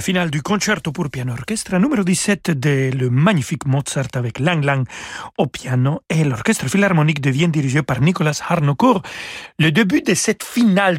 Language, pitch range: French, 135-180 Hz